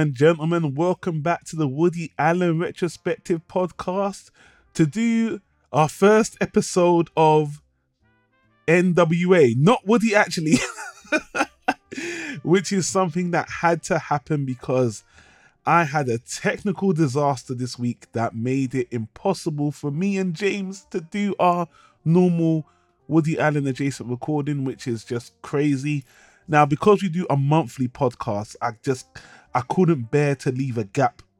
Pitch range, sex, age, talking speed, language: 130-175 Hz, male, 20-39, 135 wpm, English